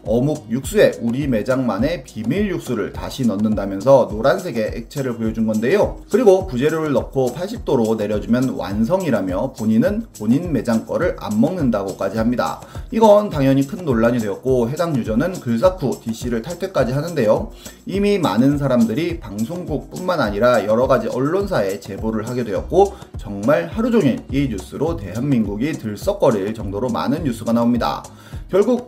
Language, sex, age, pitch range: Korean, male, 30-49, 110-165 Hz